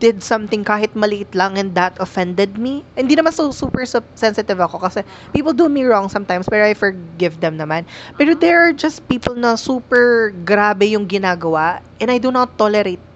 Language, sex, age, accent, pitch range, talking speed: Filipino, female, 20-39, native, 180-235 Hz, 190 wpm